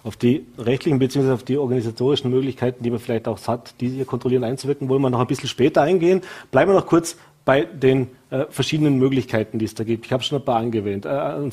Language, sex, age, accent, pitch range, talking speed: German, male, 40-59, German, 125-155 Hz, 230 wpm